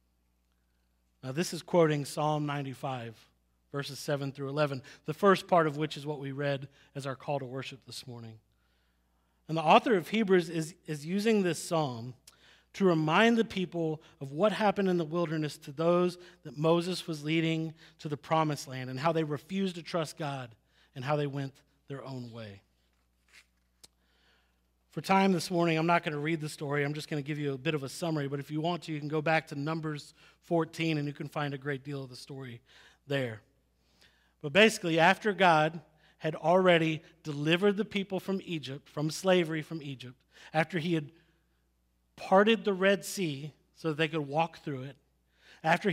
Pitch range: 135-170 Hz